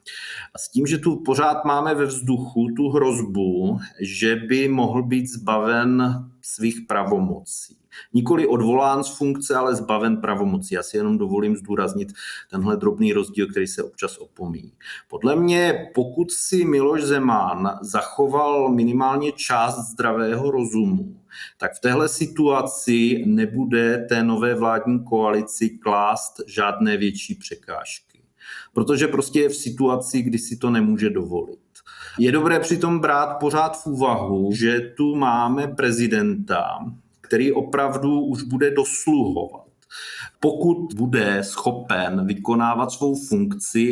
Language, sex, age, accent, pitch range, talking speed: Czech, male, 40-59, native, 115-145 Hz, 125 wpm